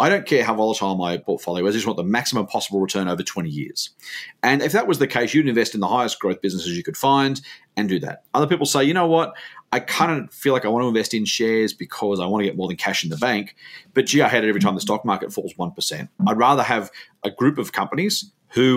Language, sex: English, male